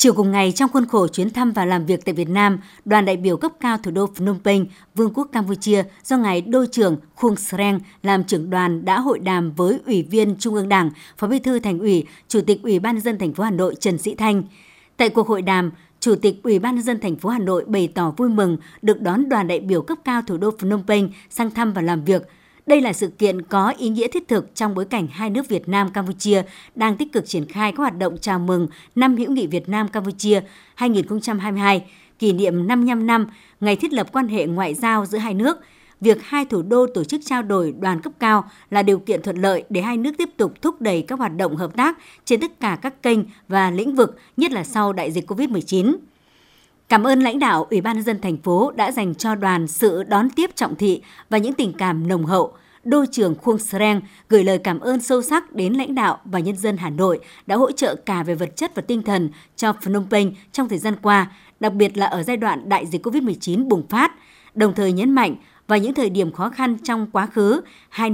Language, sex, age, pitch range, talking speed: Vietnamese, male, 60-79, 190-240 Hz, 235 wpm